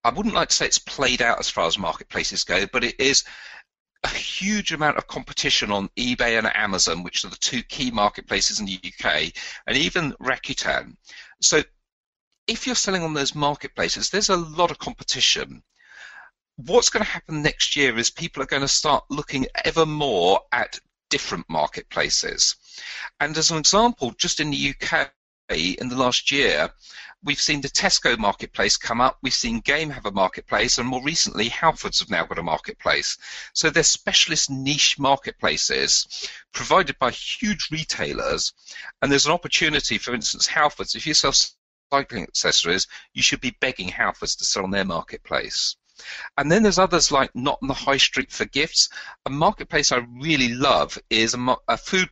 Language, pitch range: English, 130-170 Hz